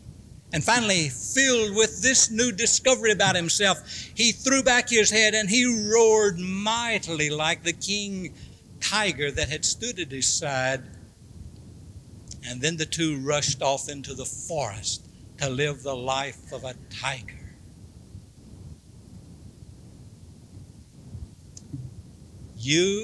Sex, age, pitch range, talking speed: male, 60-79, 105-175 Hz, 115 wpm